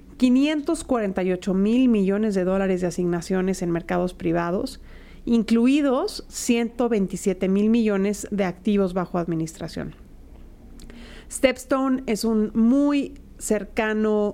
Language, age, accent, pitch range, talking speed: Spanish, 40-59, Mexican, 195-235 Hz, 95 wpm